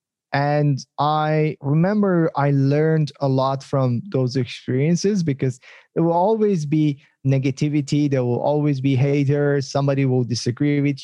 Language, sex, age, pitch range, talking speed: English, male, 20-39, 130-155 Hz, 135 wpm